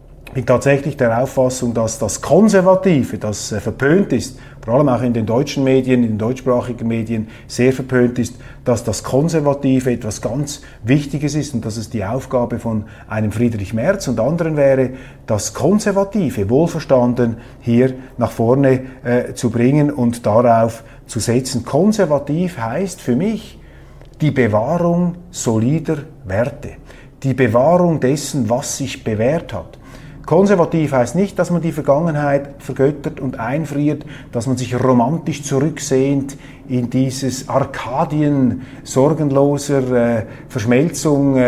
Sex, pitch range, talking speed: male, 125-150 Hz, 135 wpm